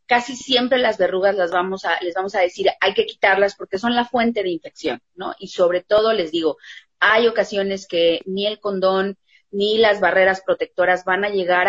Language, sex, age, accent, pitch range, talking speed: Spanish, female, 30-49, Mexican, 180-230 Hz, 200 wpm